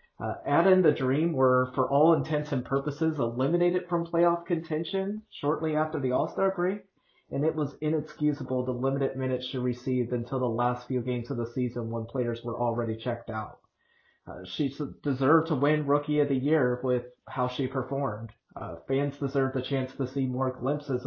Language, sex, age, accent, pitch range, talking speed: English, male, 30-49, American, 125-140 Hz, 185 wpm